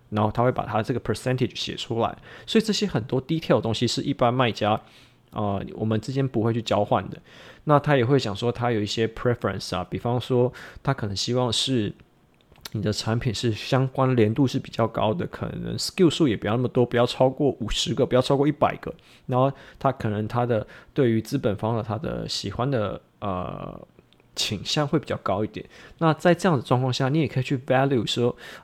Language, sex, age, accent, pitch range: Chinese, male, 20-39, native, 110-140 Hz